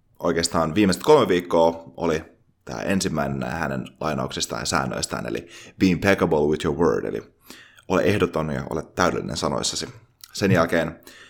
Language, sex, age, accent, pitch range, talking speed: Finnish, male, 20-39, native, 80-110 Hz, 140 wpm